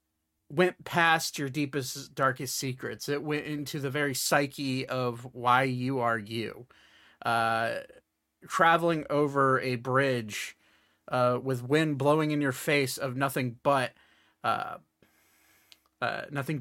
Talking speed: 125 wpm